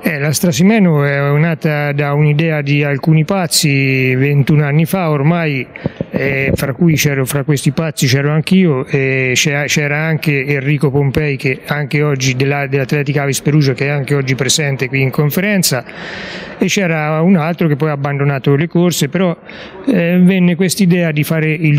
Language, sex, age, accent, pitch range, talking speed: Italian, male, 30-49, native, 145-175 Hz, 165 wpm